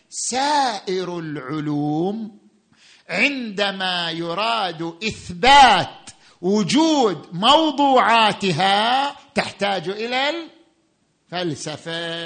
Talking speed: 50 wpm